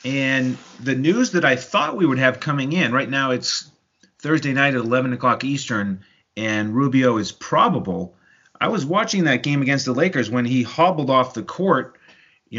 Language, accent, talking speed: English, American, 185 wpm